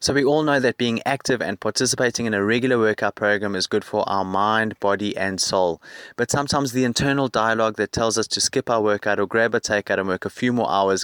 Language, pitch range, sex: English, 105-130 Hz, male